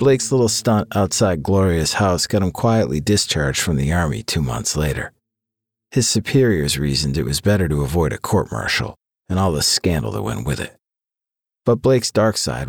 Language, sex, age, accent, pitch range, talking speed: English, male, 50-69, American, 85-110 Hz, 180 wpm